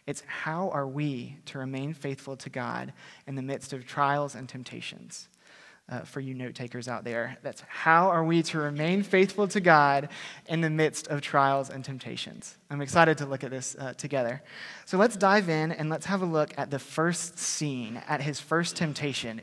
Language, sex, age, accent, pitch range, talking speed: English, male, 30-49, American, 135-170 Hz, 200 wpm